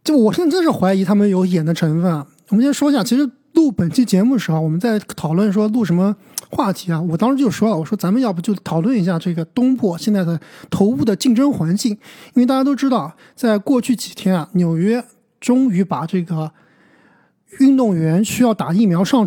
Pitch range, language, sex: 180-250 Hz, Chinese, male